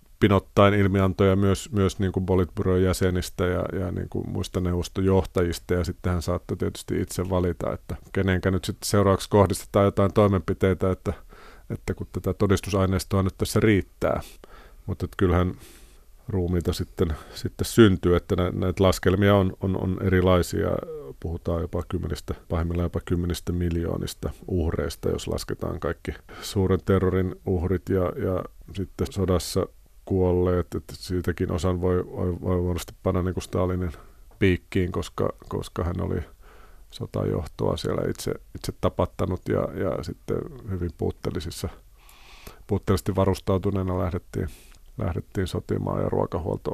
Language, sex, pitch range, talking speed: Finnish, male, 90-95 Hz, 125 wpm